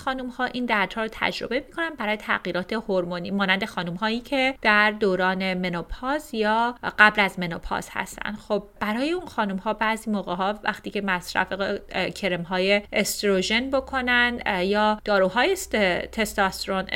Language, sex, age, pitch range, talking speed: Persian, female, 30-49, 190-245 Hz, 125 wpm